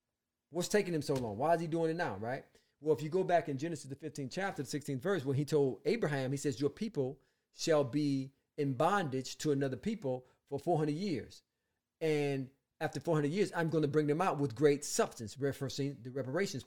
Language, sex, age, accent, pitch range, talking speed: English, male, 40-59, American, 130-165 Hz, 210 wpm